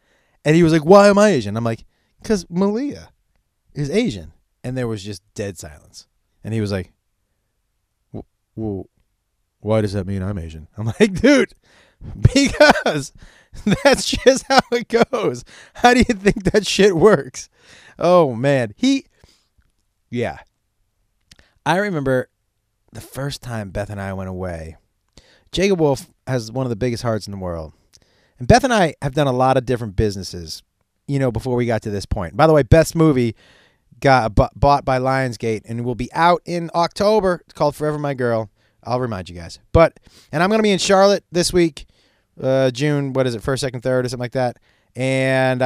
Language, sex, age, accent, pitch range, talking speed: English, male, 30-49, American, 100-150 Hz, 180 wpm